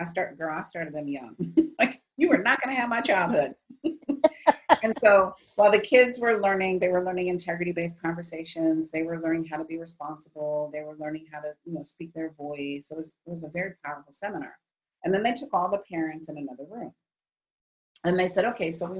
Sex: female